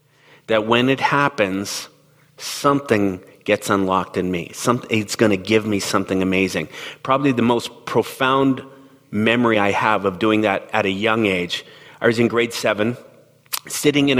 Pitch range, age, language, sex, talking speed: 110-140 Hz, 40-59, English, male, 160 wpm